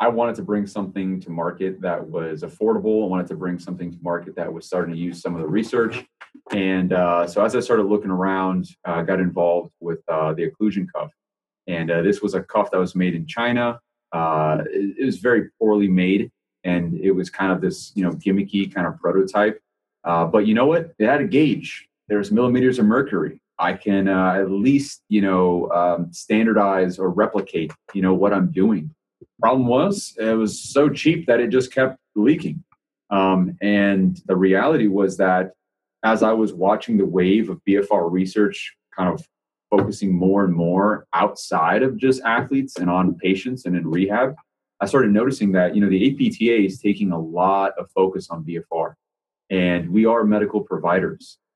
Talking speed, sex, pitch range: 190 wpm, male, 90-105 Hz